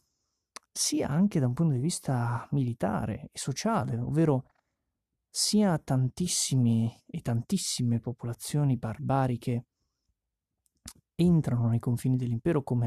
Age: 30-49